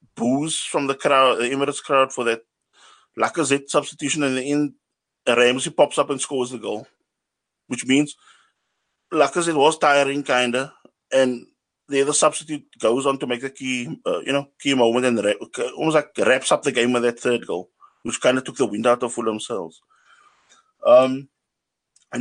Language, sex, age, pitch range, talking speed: English, male, 20-39, 125-155 Hz, 170 wpm